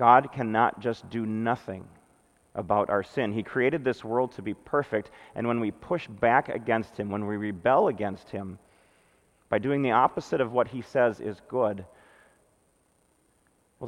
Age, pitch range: 40-59, 105-125 Hz